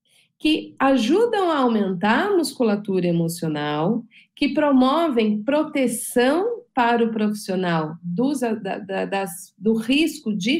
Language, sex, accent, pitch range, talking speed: Portuguese, female, Brazilian, 185-250 Hz, 90 wpm